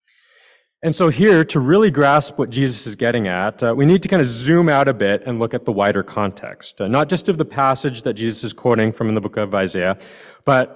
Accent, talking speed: American, 245 wpm